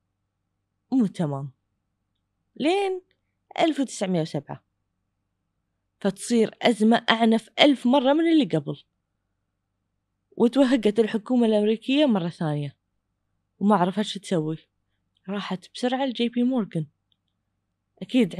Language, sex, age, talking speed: Arabic, female, 20-39, 80 wpm